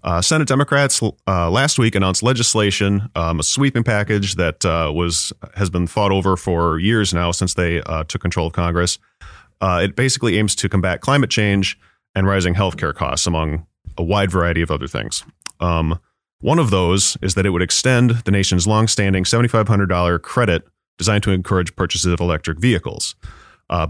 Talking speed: 185 wpm